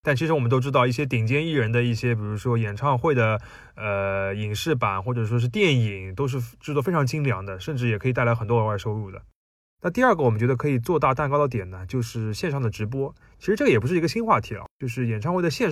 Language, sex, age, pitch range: Chinese, male, 20-39, 110-145 Hz